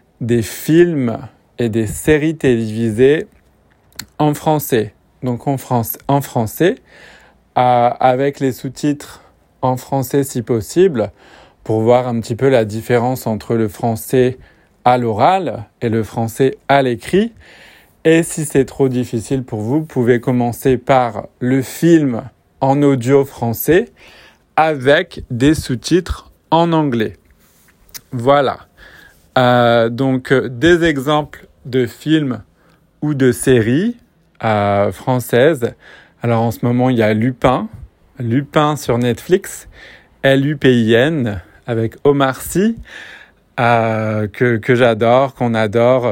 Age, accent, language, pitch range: 40-59, French, French, 115-140 Hz